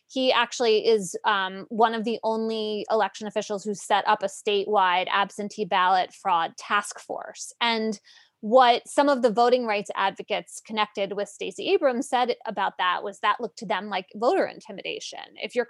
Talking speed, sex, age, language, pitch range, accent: 170 wpm, female, 20-39, English, 205-265 Hz, American